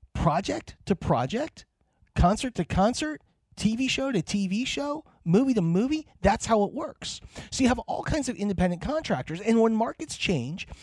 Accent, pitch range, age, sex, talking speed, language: American, 165-250 Hz, 30-49, male, 165 wpm, English